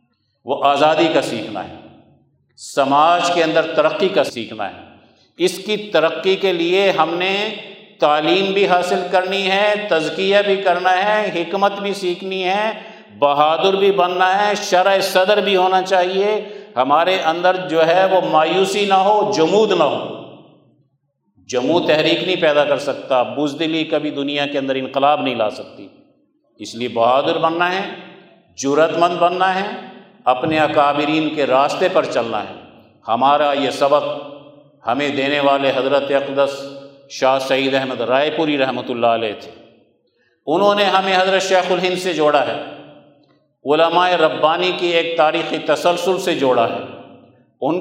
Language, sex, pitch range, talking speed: Urdu, male, 150-185 Hz, 150 wpm